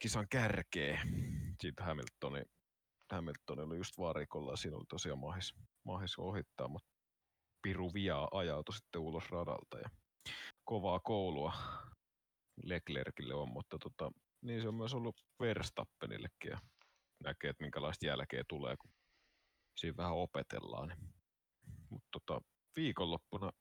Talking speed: 120 wpm